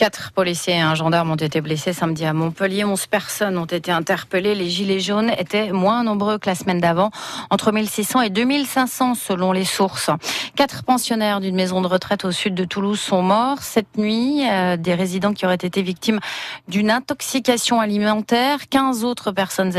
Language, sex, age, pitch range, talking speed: French, female, 30-49, 185-230 Hz, 180 wpm